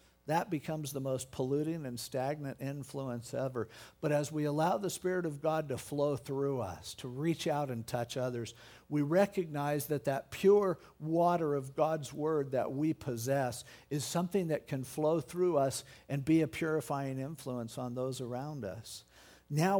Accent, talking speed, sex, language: American, 170 wpm, male, English